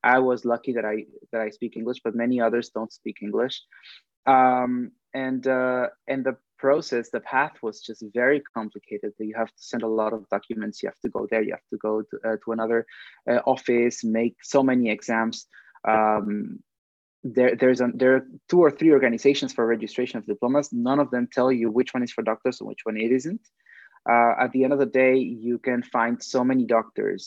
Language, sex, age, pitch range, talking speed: English, male, 20-39, 110-130 Hz, 210 wpm